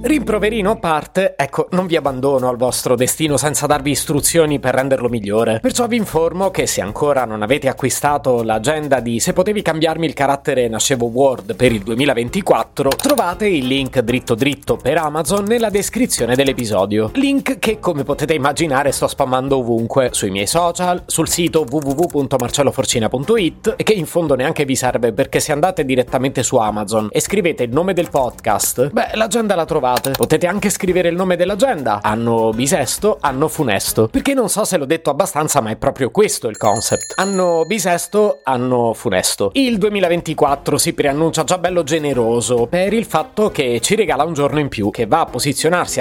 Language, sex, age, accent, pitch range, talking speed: Italian, male, 30-49, native, 125-180 Hz, 170 wpm